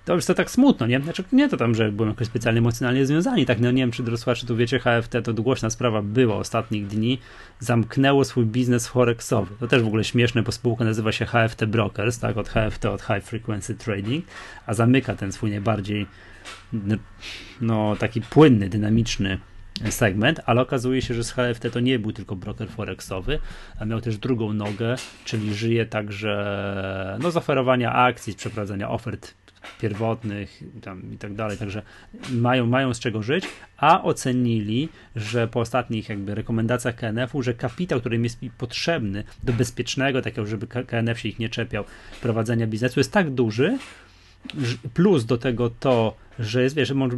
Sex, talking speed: male, 175 wpm